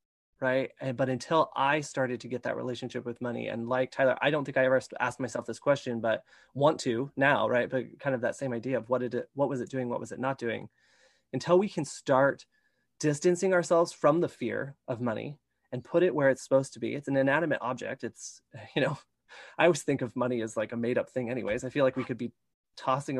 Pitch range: 125-155 Hz